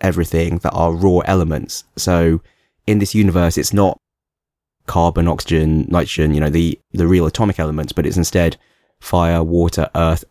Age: 20-39